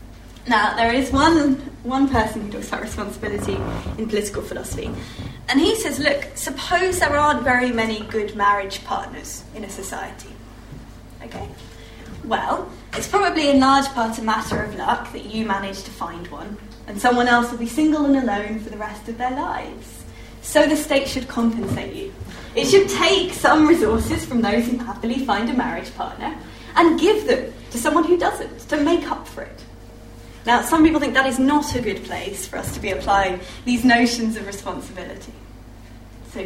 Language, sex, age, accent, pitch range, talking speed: English, female, 20-39, British, 210-295 Hz, 180 wpm